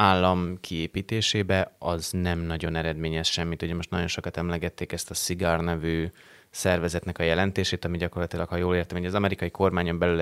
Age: 30-49